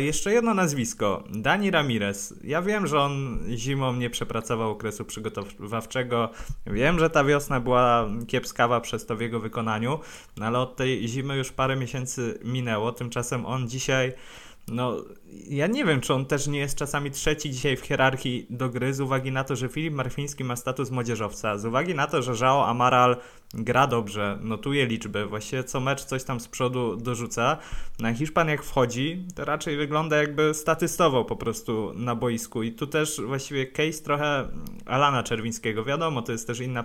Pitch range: 115-140 Hz